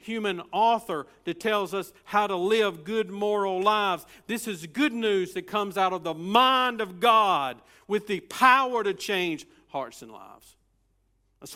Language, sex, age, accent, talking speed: English, male, 50-69, American, 165 wpm